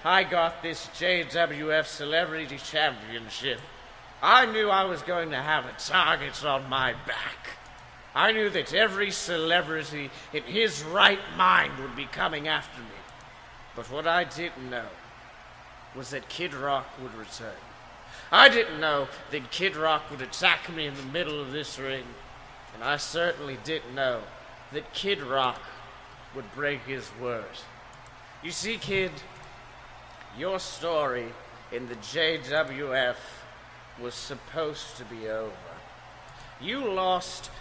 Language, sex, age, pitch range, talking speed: English, male, 30-49, 130-175 Hz, 135 wpm